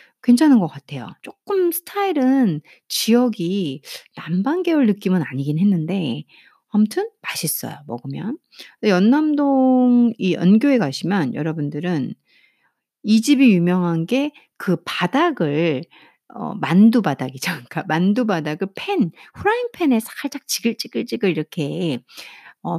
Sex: female